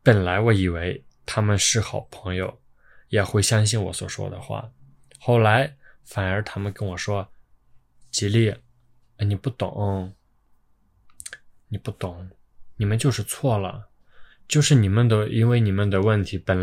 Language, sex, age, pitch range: Chinese, male, 20-39, 95-115 Hz